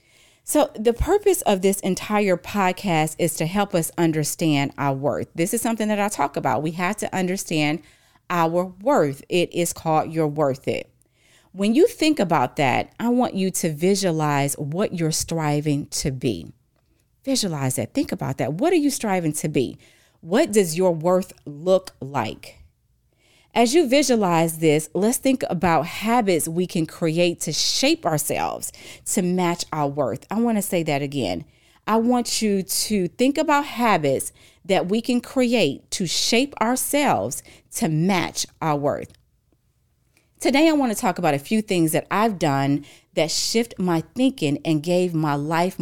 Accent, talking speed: American, 165 wpm